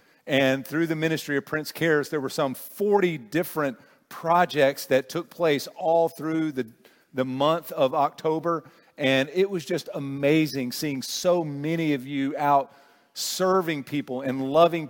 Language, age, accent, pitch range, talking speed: English, 50-69, American, 130-165 Hz, 155 wpm